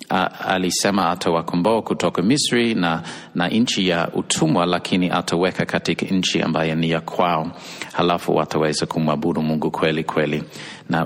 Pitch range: 85-110 Hz